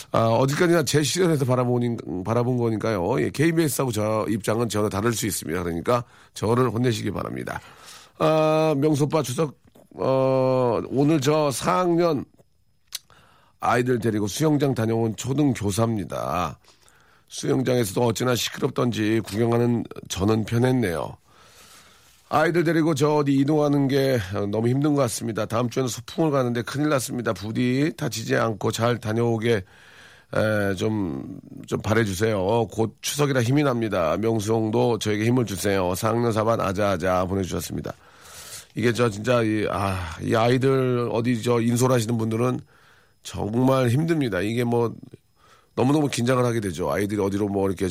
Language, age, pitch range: Korean, 40-59, 105-130 Hz